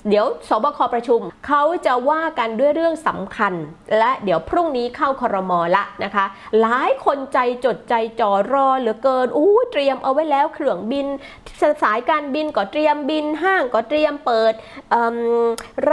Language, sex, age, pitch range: Thai, female, 20-39, 220-295 Hz